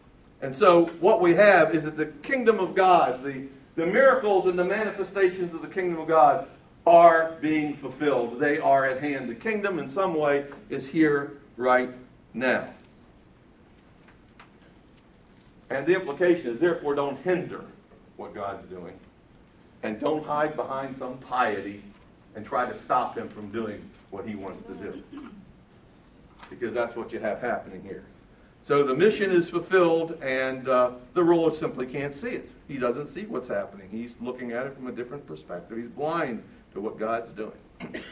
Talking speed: 165 wpm